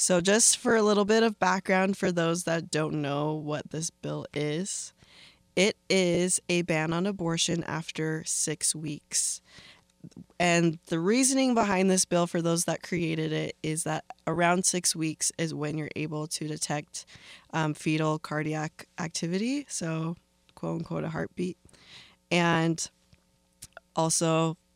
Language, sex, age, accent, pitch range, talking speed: English, female, 20-39, American, 155-185 Hz, 145 wpm